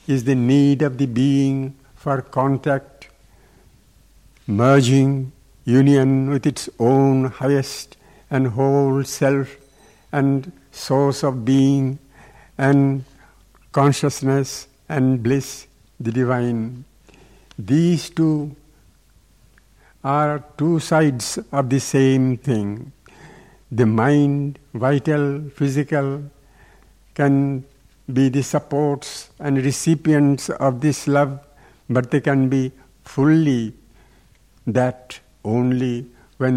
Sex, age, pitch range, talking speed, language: male, 60-79, 125-140 Hz, 95 wpm, English